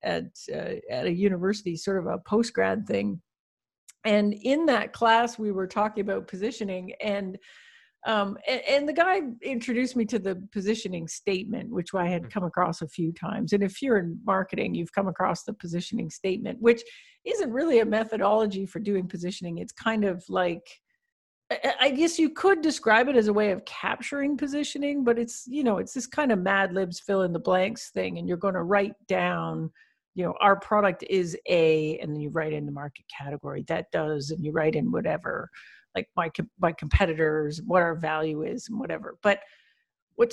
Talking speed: 200 wpm